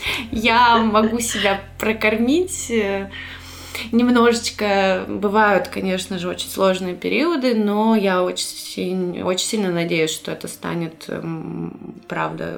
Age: 20-39